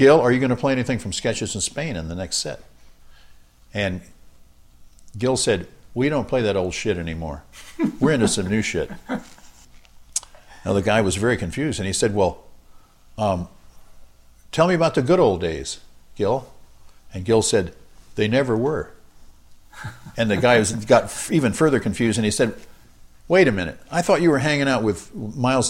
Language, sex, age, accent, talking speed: English, male, 60-79, American, 175 wpm